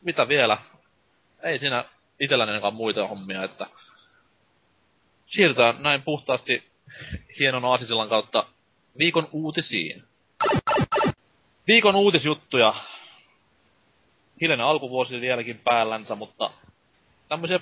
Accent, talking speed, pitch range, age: native, 85 wpm, 110-150 Hz, 30-49